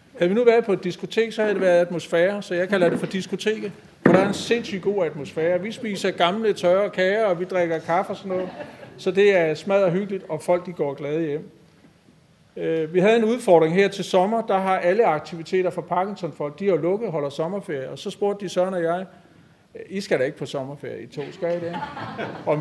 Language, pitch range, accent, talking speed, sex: Danish, 170-205 Hz, native, 225 wpm, male